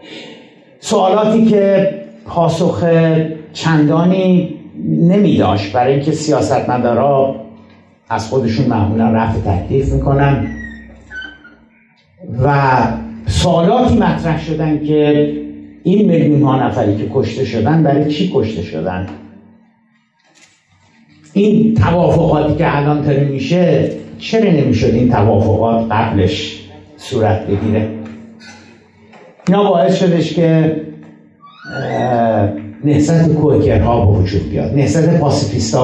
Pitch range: 110-160 Hz